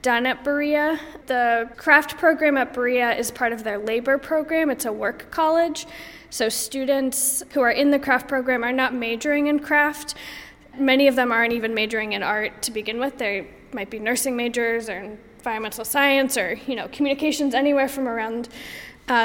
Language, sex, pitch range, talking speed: English, female, 225-275 Hz, 180 wpm